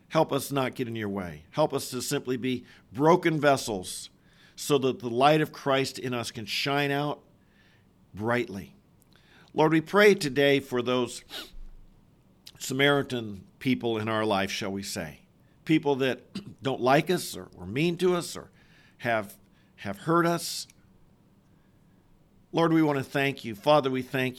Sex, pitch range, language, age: male, 120-145 Hz, English, 50-69